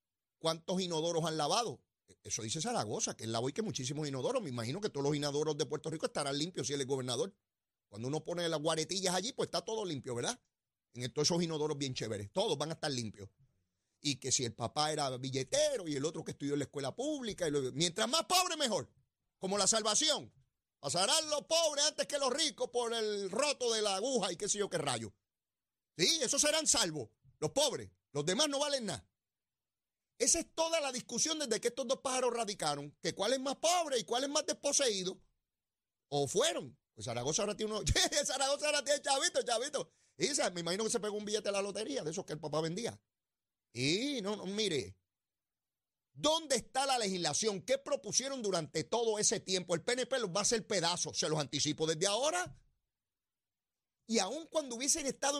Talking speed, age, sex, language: 205 wpm, 40-59, male, Spanish